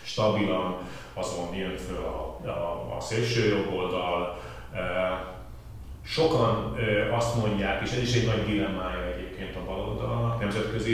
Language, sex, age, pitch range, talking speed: Hungarian, male, 30-49, 95-110 Hz, 130 wpm